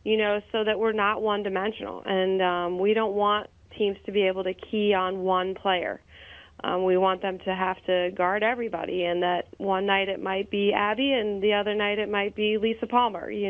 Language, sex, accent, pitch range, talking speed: English, female, American, 185-215 Hz, 215 wpm